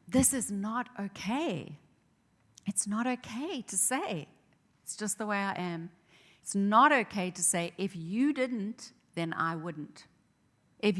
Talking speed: 145 wpm